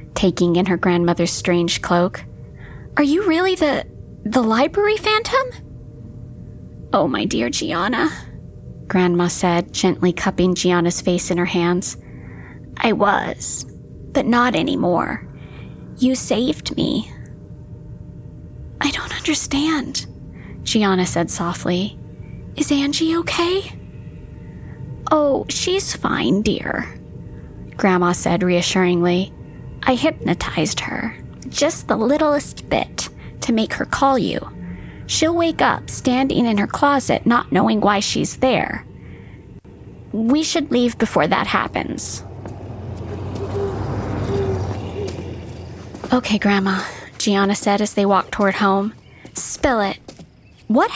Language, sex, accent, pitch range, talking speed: English, female, American, 175-280 Hz, 110 wpm